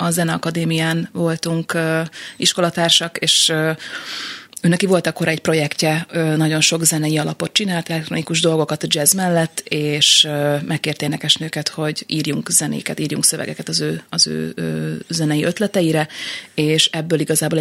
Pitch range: 155-170 Hz